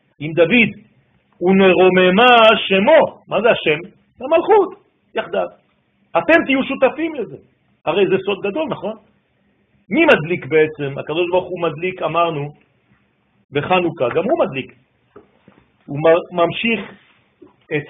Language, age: French, 50-69